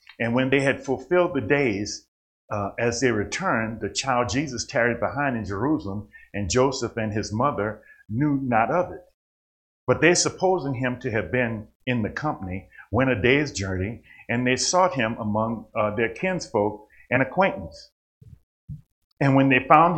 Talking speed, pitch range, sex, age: 165 wpm, 115-160 Hz, male, 50-69